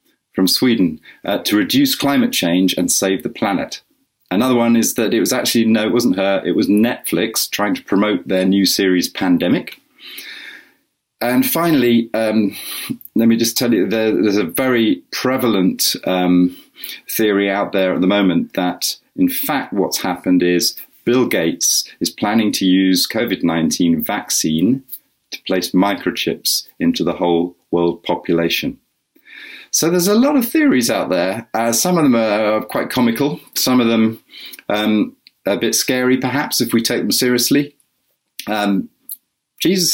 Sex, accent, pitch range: male, British, 95-130 Hz